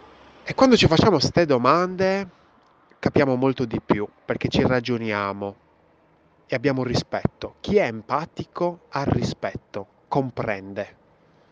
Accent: native